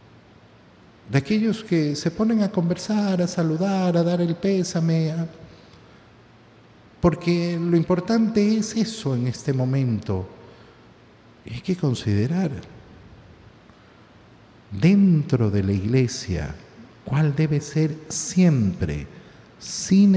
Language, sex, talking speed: Spanish, male, 100 wpm